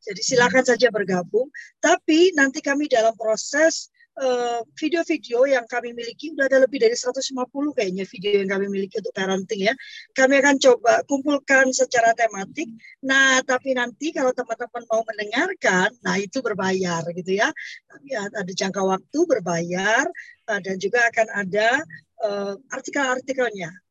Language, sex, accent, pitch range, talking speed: Indonesian, female, native, 225-285 Hz, 145 wpm